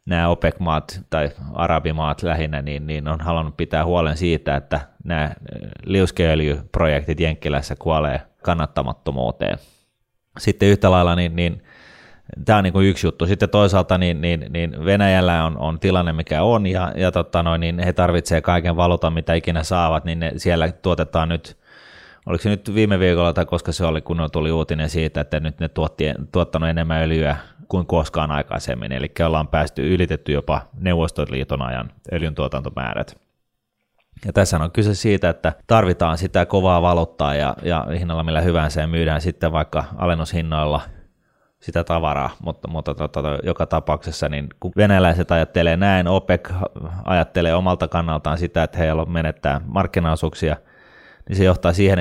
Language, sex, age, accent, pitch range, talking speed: Finnish, male, 30-49, native, 80-90 Hz, 155 wpm